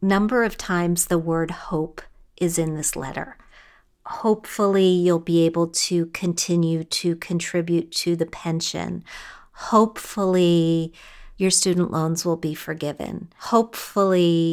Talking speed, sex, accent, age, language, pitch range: 120 wpm, female, American, 40-59, English, 165-200 Hz